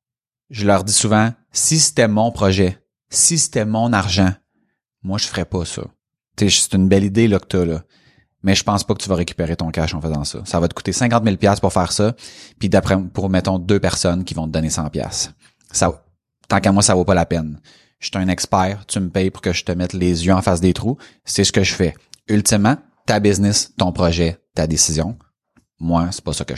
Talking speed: 230 wpm